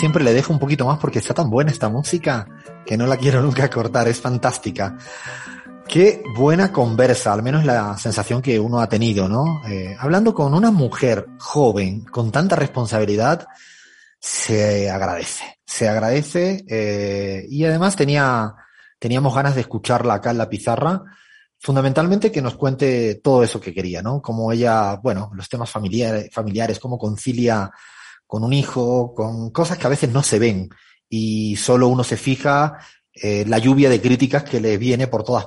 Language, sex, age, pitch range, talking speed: Spanish, male, 30-49, 110-140 Hz, 170 wpm